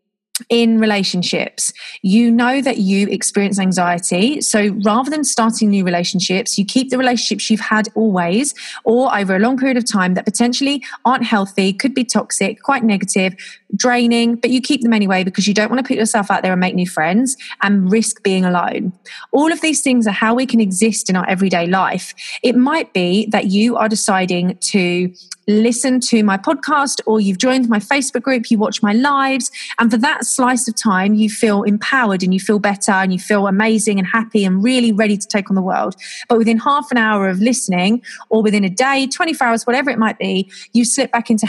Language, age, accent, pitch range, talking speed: English, 30-49, British, 195-240 Hz, 205 wpm